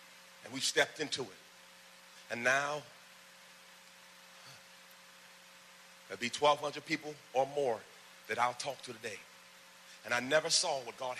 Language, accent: English, American